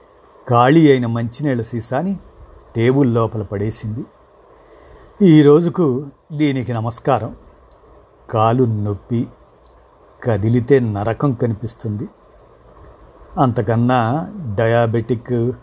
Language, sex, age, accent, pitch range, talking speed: Telugu, male, 50-69, native, 120-195 Hz, 65 wpm